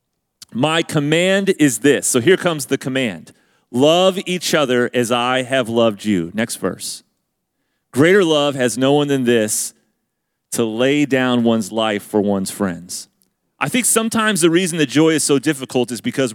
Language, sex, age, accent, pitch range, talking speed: English, male, 30-49, American, 125-160 Hz, 170 wpm